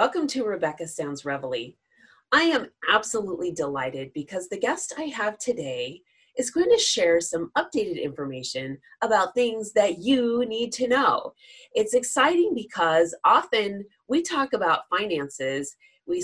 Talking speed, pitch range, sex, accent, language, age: 140 wpm, 165-260 Hz, female, American, English, 30-49